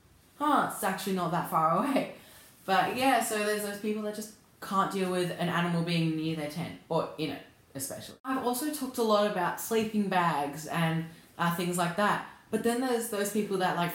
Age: 10-29